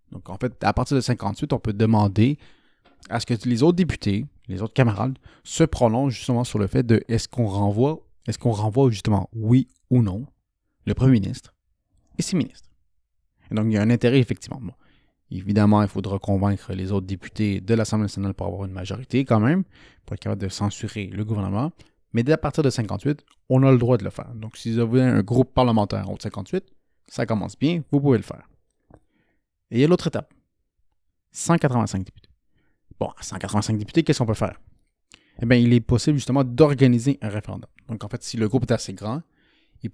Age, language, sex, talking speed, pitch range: 30-49, French, male, 205 wpm, 100-130 Hz